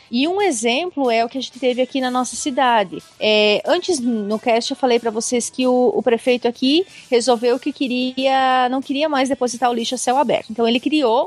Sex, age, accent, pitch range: female, 30-49, Brazilian, 235-290 Hz